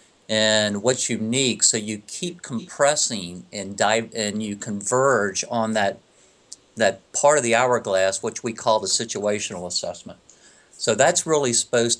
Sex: male